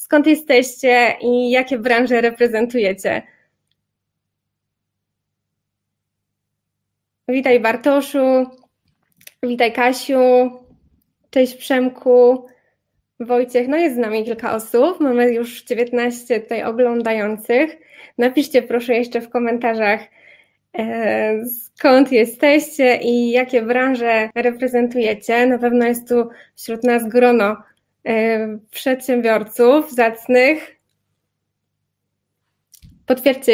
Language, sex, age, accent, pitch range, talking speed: Polish, female, 20-39, native, 225-255 Hz, 80 wpm